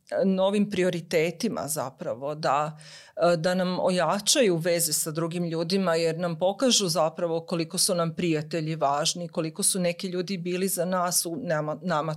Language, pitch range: Croatian, 160-205 Hz